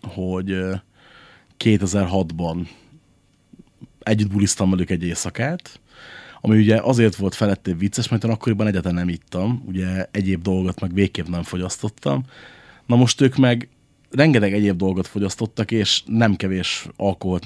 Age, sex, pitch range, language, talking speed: 30-49, male, 95-115 Hz, Hungarian, 130 wpm